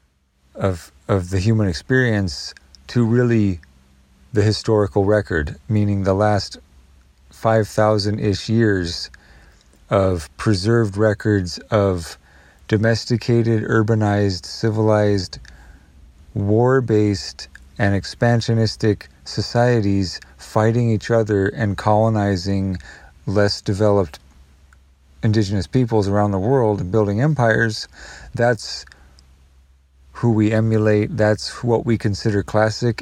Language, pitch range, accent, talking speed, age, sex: English, 85-115 Hz, American, 90 wpm, 40-59, male